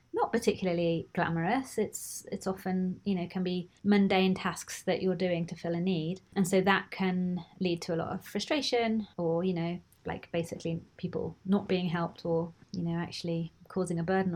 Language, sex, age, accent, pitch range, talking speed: English, female, 30-49, British, 175-195 Hz, 190 wpm